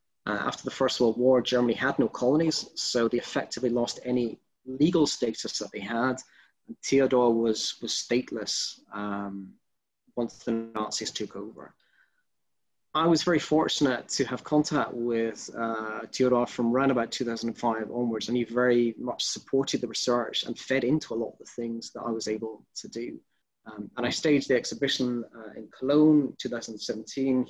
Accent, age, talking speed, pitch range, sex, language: British, 20-39, 175 wpm, 115-140 Hz, male, English